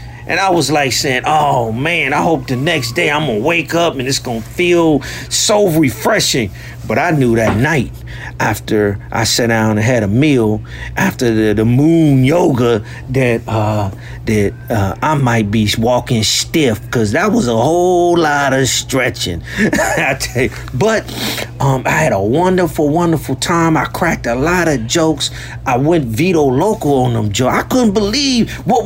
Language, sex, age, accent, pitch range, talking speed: English, male, 40-59, American, 120-170 Hz, 175 wpm